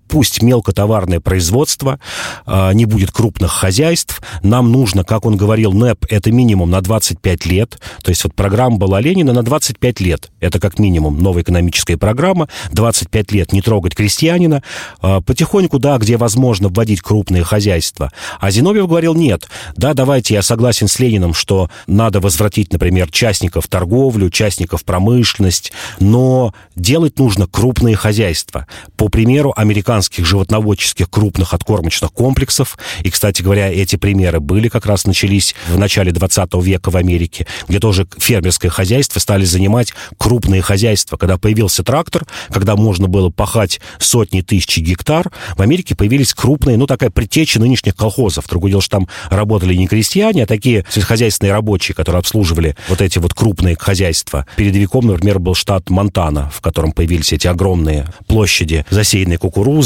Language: Russian